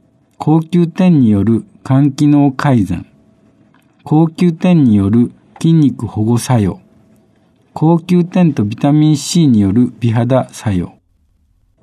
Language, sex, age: Japanese, male, 60-79